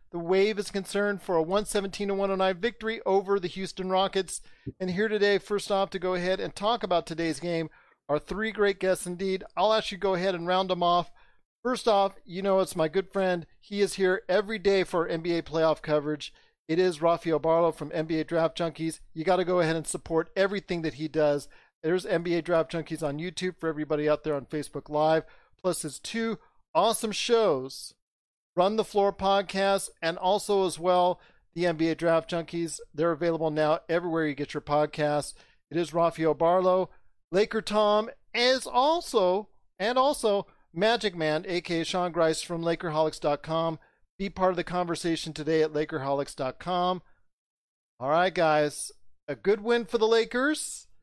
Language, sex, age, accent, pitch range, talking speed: English, male, 40-59, American, 160-195 Hz, 175 wpm